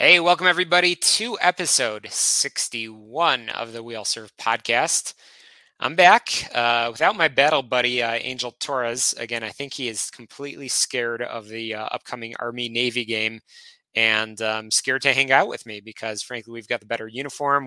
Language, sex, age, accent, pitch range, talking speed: English, male, 20-39, American, 110-130 Hz, 170 wpm